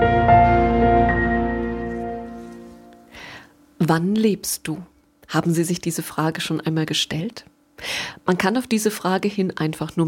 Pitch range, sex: 150-210 Hz, female